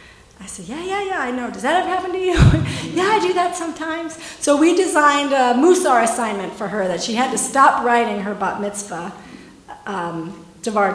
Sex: female